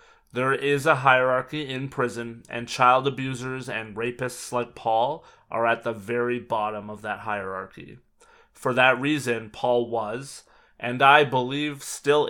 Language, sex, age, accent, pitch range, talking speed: English, male, 30-49, American, 115-140 Hz, 145 wpm